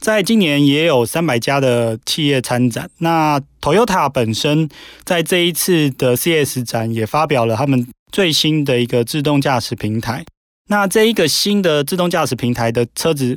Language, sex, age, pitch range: Chinese, male, 20-39, 125-160 Hz